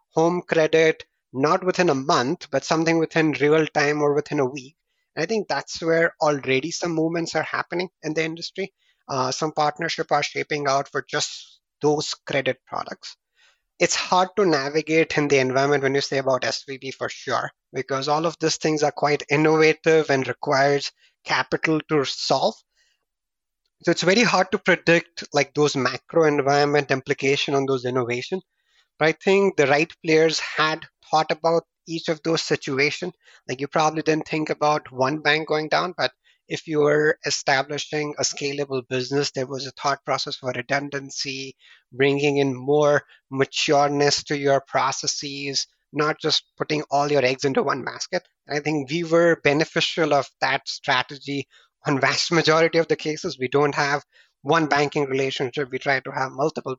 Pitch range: 140-160 Hz